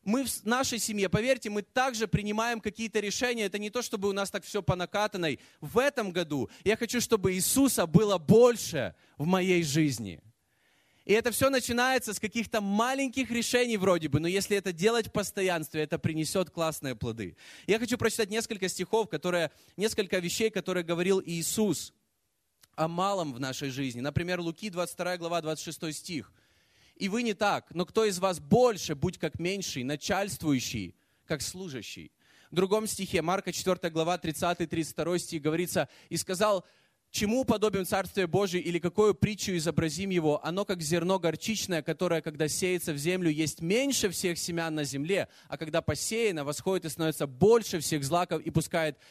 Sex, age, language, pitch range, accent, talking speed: male, 20-39, Russian, 160-210 Hz, native, 165 wpm